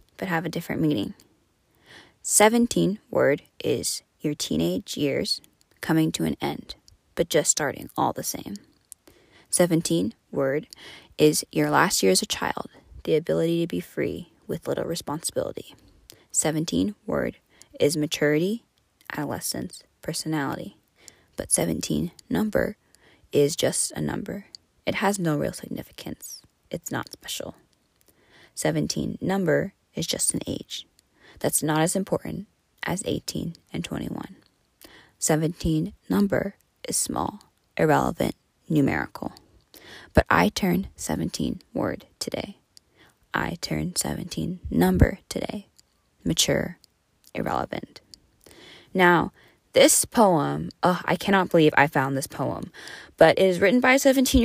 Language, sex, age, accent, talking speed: English, female, 10-29, American, 120 wpm